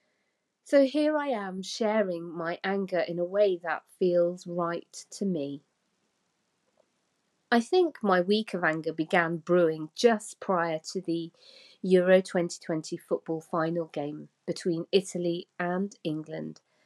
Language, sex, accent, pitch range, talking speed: English, female, British, 175-235 Hz, 130 wpm